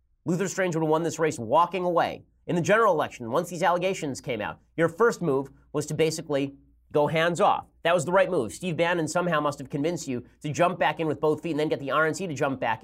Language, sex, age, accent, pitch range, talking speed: English, male, 30-49, American, 130-165 Hz, 250 wpm